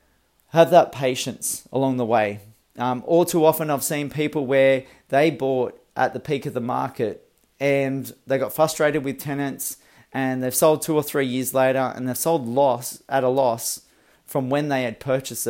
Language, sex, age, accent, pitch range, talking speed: English, male, 30-49, Australian, 130-150 Hz, 180 wpm